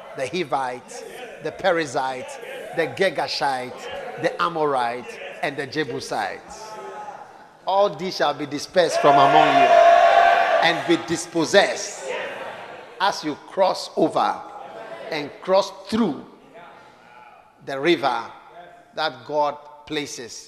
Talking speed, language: 100 wpm, English